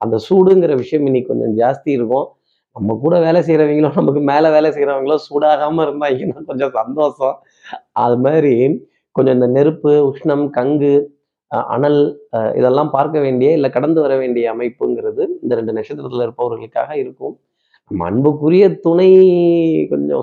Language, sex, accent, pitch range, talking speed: Tamil, male, native, 130-170 Hz, 130 wpm